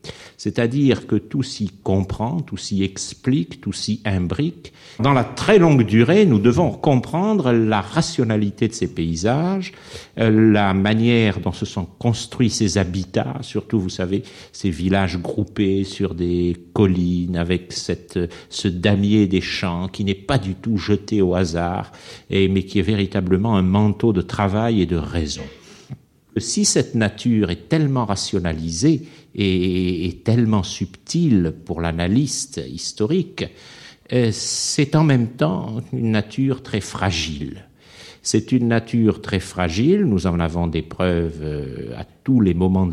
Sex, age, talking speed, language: male, 60-79, 140 wpm, French